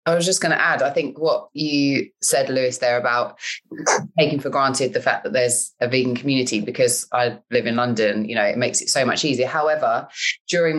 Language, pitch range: English, 125-140 Hz